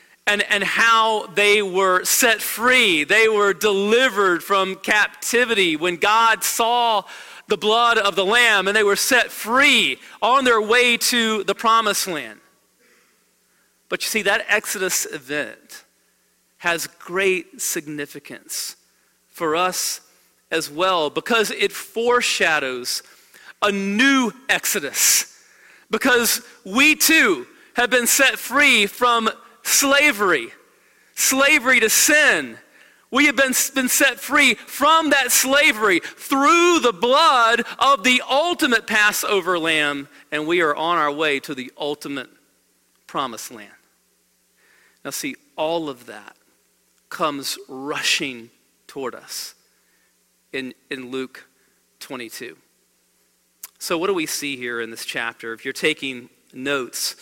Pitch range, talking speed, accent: 180-265 Hz, 125 wpm, American